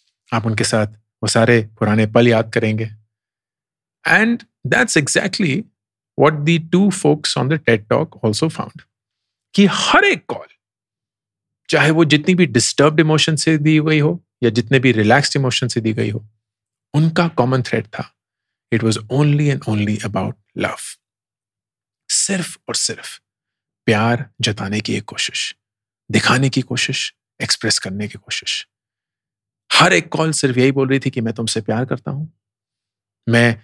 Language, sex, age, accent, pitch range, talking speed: English, male, 40-59, Indian, 110-150 Hz, 120 wpm